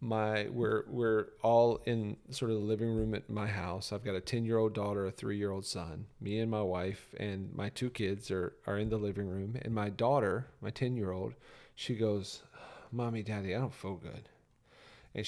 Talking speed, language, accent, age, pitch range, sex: 215 wpm, English, American, 40-59, 105-130 Hz, male